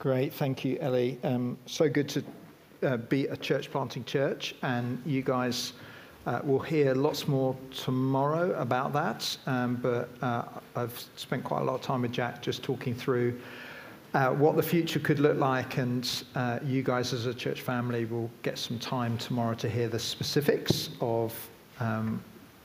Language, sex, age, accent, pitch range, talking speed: English, male, 50-69, British, 120-145 Hz, 175 wpm